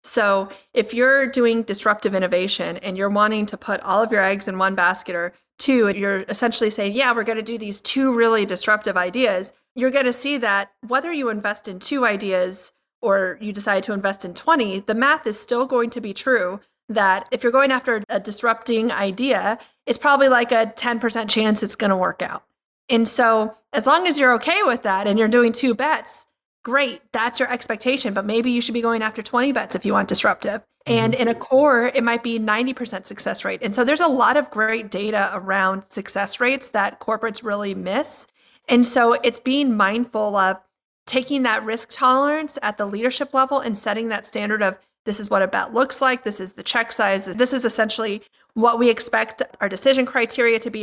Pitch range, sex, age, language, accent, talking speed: 205-255 Hz, female, 30-49, English, American, 210 wpm